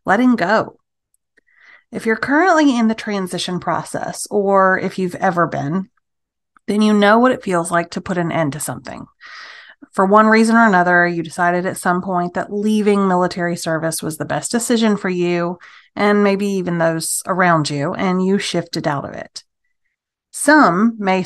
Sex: female